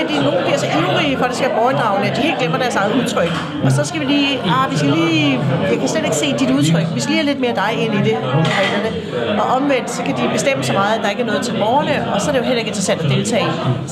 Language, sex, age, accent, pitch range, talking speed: Danish, female, 40-59, native, 190-255 Hz, 295 wpm